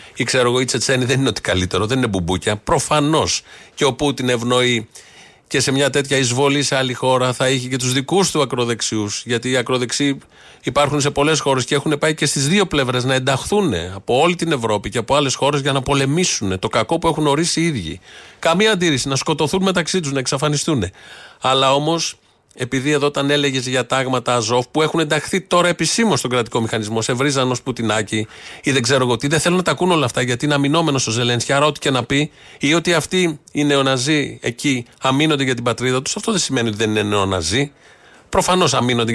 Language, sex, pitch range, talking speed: Greek, male, 125-155 Hz, 205 wpm